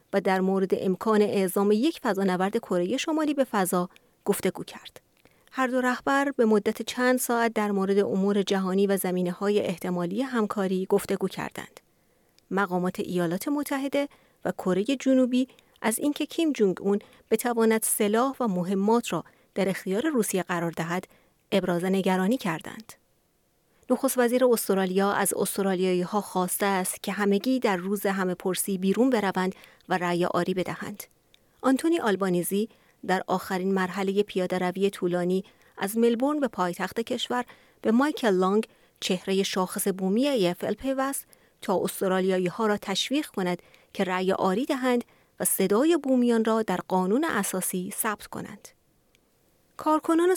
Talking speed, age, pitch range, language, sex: 135 wpm, 30-49, 185-240 Hz, Persian, female